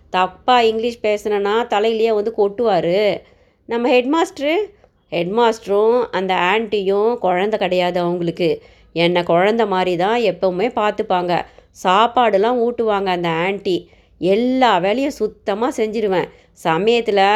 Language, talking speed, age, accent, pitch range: Tamil, 105 wpm, 20-39, native, 180-230 Hz